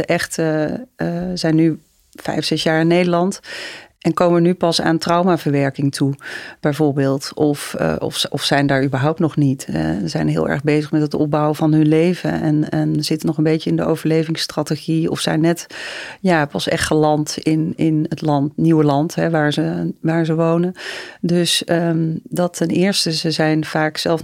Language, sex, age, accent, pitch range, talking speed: Dutch, female, 40-59, Dutch, 155-170 Hz, 185 wpm